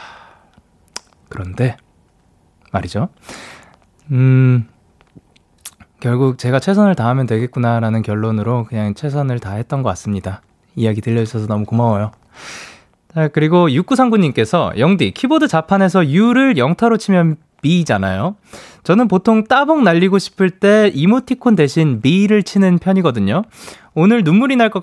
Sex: male